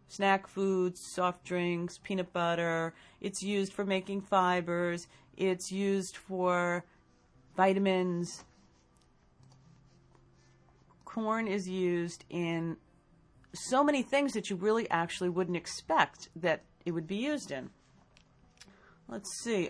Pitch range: 160-210 Hz